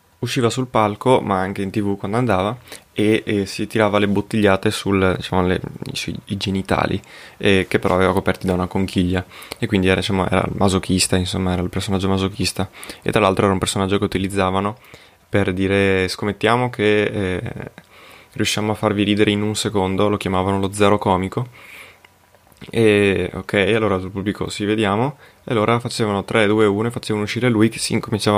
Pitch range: 95-115 Hz